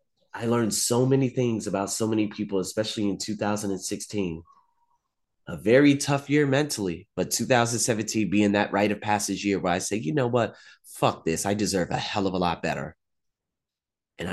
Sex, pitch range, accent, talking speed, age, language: male, 105-135 Hz, American, 175 wpm, 30-49, English